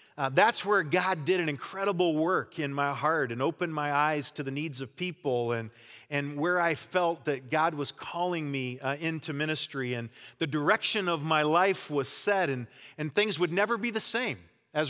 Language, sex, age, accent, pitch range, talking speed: English, male, 40-59, American, 145-190 Hz, 200 wpm